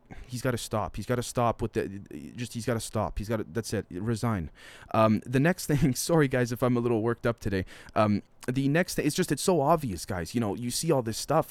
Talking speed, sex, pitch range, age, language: 265 wpm, male, 105-125 Hz, 30-49, English